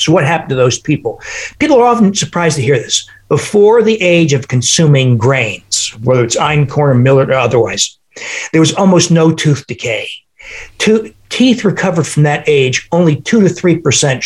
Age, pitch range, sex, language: 60-79, 130-175 Hz, male, English